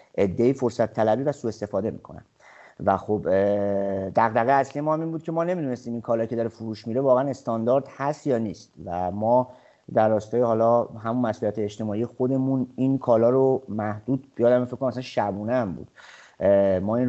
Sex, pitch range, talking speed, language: male, 105-125 Hz, 175 wpm, Persian